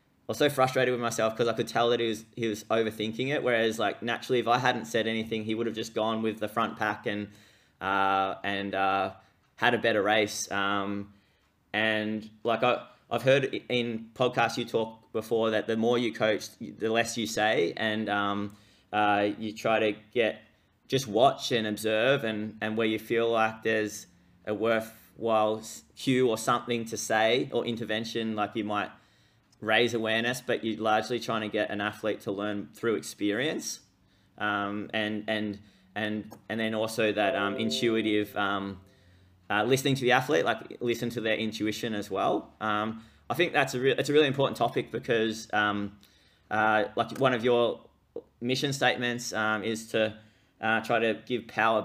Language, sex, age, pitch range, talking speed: English, male, 20-39, 105-115 Hz, 180 wpm